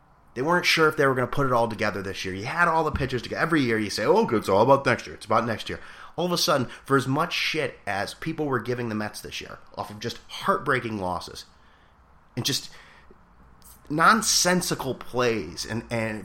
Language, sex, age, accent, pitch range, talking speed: English, male, 30-49, American, 95-145 Hz, 235 wpm